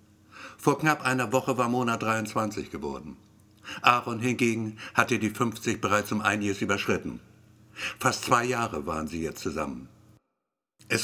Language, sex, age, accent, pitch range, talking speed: German, male, 60-79, German, 105-130 Hz, 135 wpm